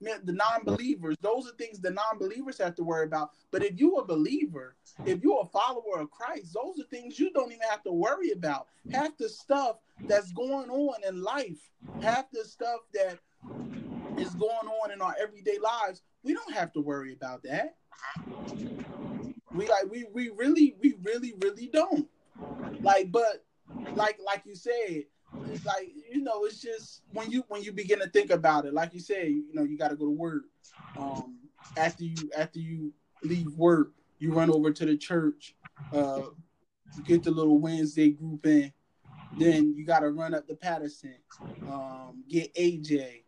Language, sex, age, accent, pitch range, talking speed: English, male, 20-39, American, 155-235 Hz, 185 wpm